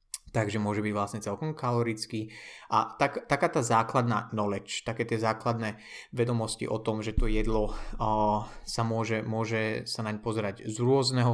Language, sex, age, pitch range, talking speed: Slovak, male, 20-39, 105-120 Hz, 160 wpm